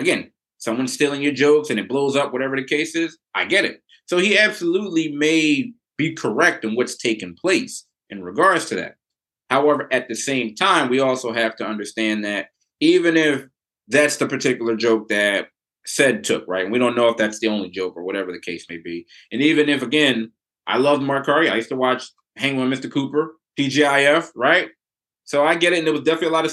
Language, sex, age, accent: English, male, 30-49, American